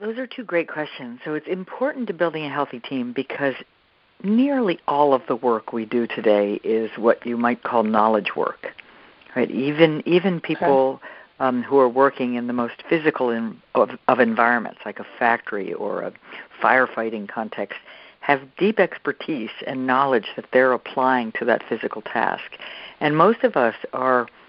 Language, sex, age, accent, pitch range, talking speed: English, female, 60-79, American, 115-150 Hz, 170 wpm